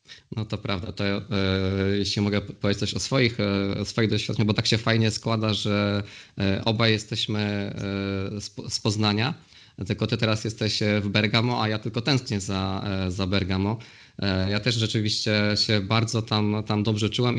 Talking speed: 160 wpm